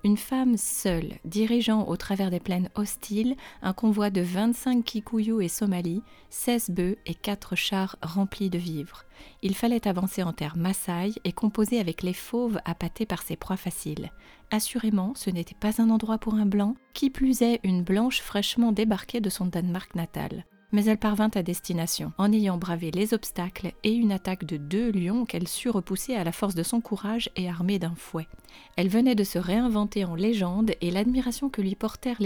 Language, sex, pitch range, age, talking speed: French, female, 180-230 Hz, 30-49, 190 wpm